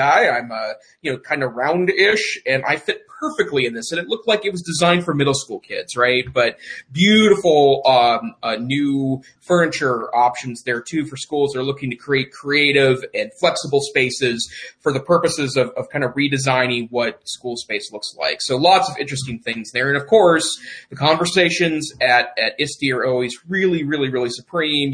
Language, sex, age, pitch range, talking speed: English, male, 30-49, 125-150 Hz, 185 wpm